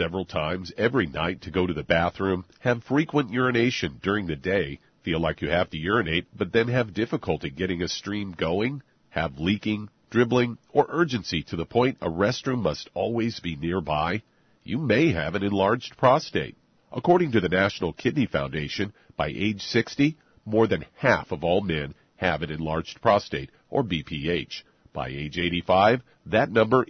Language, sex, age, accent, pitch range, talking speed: English, male, 50-69, American, 90-125 Hz, 165 wpm